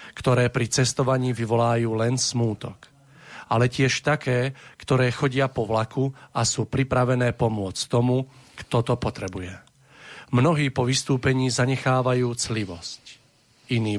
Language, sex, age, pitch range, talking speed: Slovak, male, 40-59, 110-130 Hz, 115 wpm